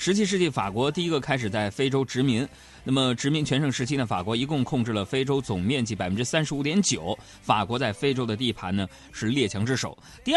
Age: 20-39